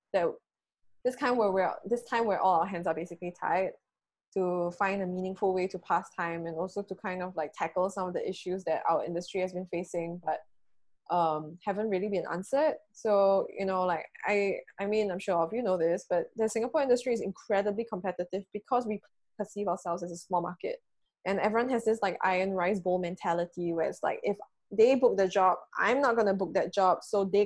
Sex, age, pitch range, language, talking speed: female, 10-29, 180-220 Hz, English, 215 wpm